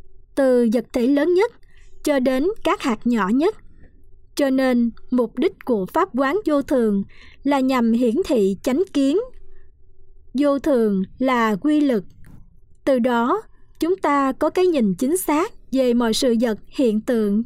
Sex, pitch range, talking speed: male, 230-295 Hz, 160 wpm